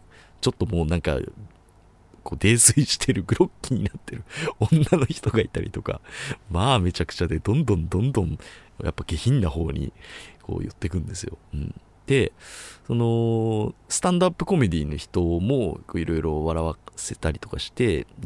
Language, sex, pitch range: Japanese, male, 80-110 Hz